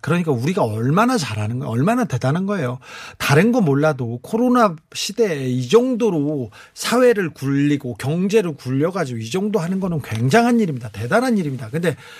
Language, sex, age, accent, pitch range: Korean, male, 40-59, native, 150-225 Hz